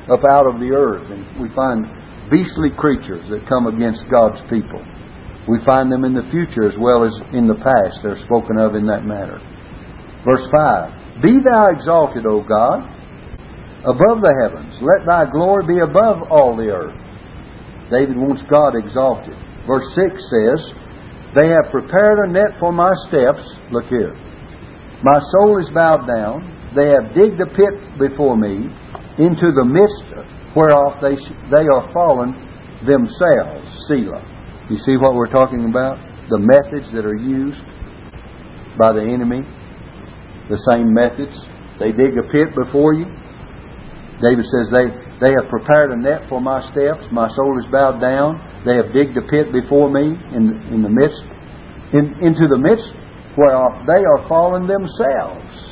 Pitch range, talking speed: 115-150 Hz, 160 wpm